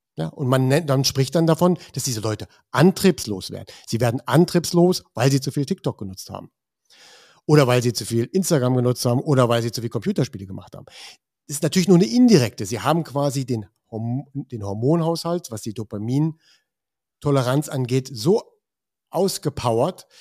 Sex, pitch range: male, 115-150 Hz